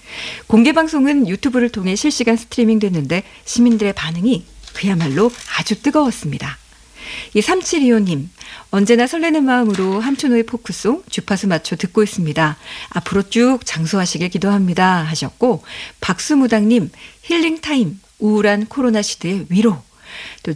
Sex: female